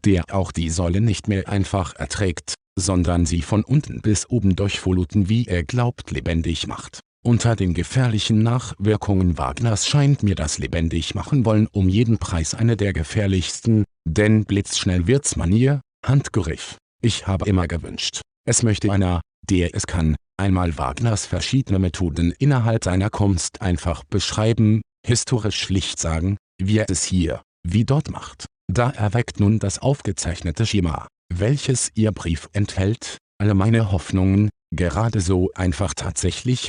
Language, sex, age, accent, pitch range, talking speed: German, male, 50-69, German, 90-115 Hz, 145 wpm